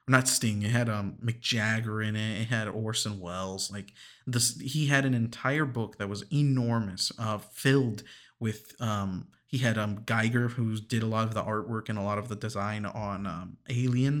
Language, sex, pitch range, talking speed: English, male, 105-125 Hz, 195 wpm